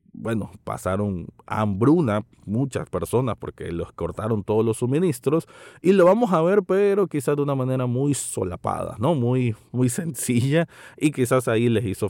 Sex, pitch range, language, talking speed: male, 100-130 Hz, Spanish, 160 wpm